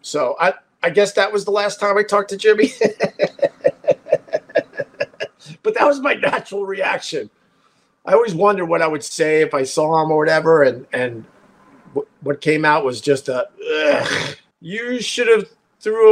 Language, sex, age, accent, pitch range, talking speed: English, male, 50-69, American, 150-205 Hz, 165 wpm